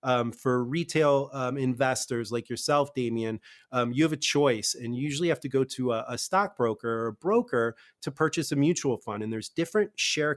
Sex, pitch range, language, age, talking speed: male, 125-155 Hz, English, 30-49, 195 wpm